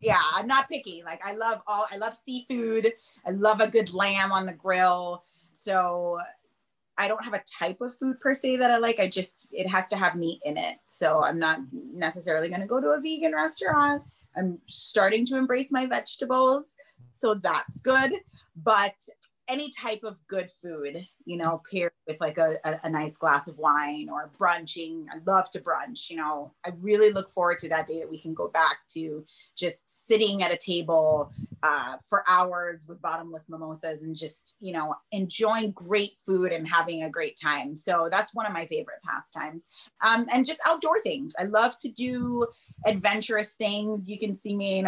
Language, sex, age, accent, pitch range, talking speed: English, female, 30-49, American, 165-220 Hz, 195 wpm